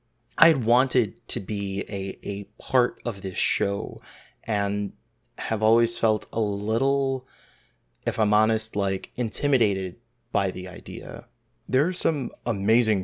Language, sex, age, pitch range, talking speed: English, male, 20-39, 100-120 Hz, 135 wpm